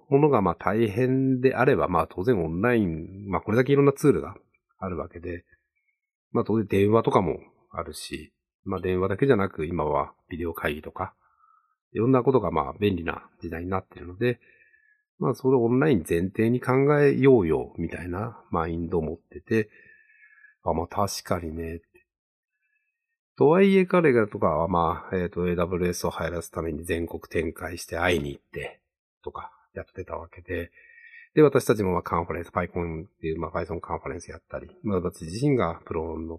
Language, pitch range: Japanese, 85-135 Hz